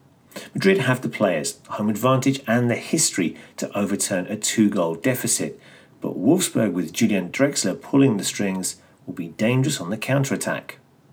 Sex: male